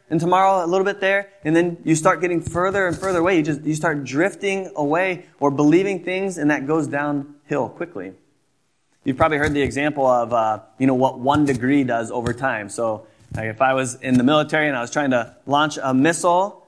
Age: 20-39